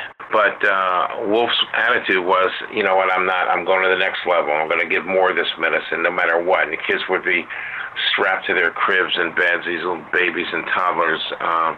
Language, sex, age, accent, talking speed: English, male, 50-69, American, 220 wpm